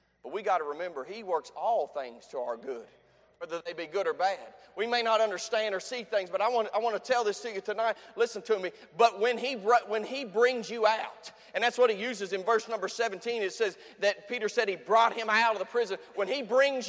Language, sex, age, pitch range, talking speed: English, male, 30-49, 215-265 Hz, 245 wpm